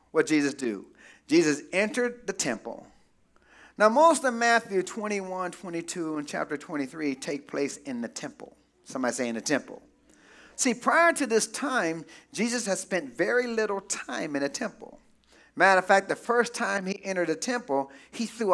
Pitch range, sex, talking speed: 165-255 Hz, male, 170 wpm